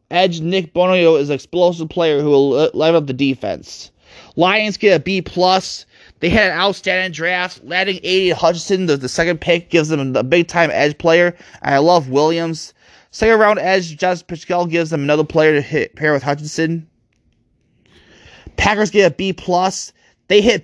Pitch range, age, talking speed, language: 145-185 Hz, 20-39, 170 wpm, English